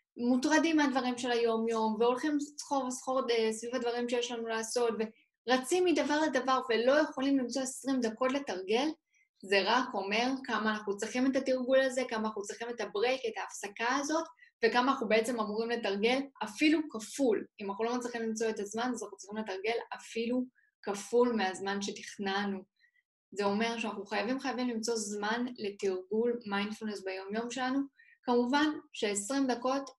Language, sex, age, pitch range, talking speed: Hebrew, female, 10-29, 215-265 Hz, 145 wpm